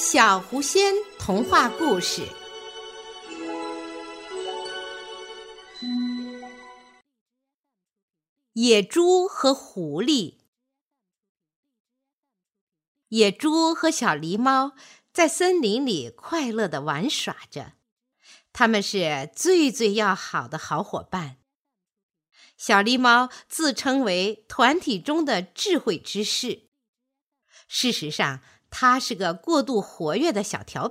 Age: 50-69